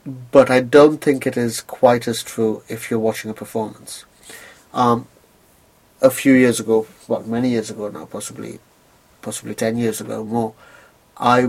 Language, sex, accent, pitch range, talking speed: English, male, British, 110-120 Hz, 170 wpm